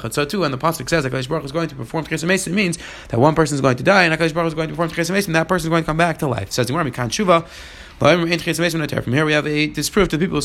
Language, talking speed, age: English, 315 wpm, 30-49